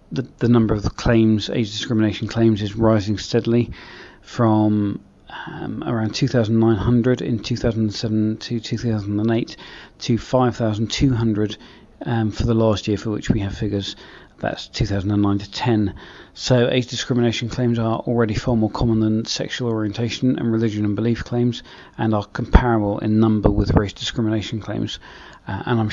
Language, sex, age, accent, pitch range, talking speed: English, male, 40-59, British, 105-120 Hz, 145 wpm